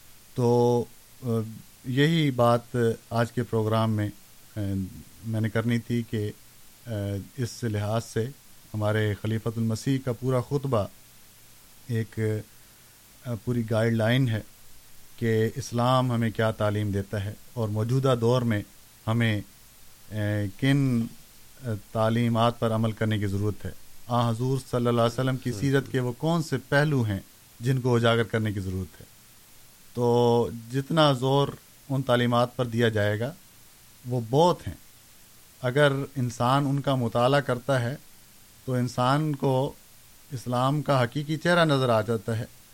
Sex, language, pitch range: male, Urdu, 110-135 Hz